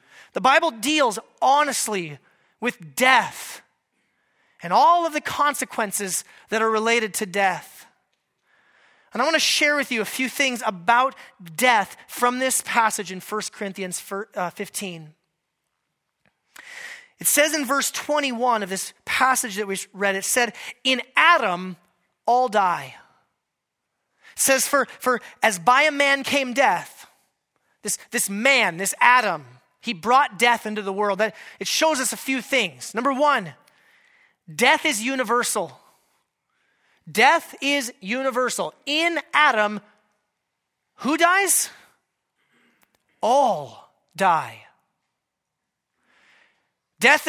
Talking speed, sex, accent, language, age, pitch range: 120 wpm, male, American, English, 30-49, 210-285 Hz